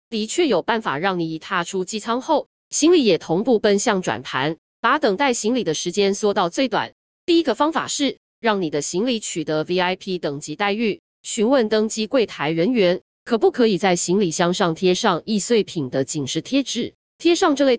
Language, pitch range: Chinese, 180-245 Hz